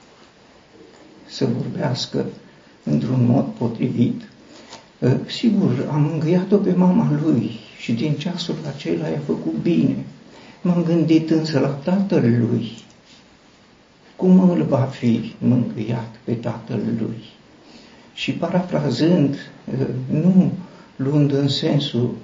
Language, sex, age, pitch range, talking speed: Romanian, male, 60-79, 130-170 Hz, 105 wpm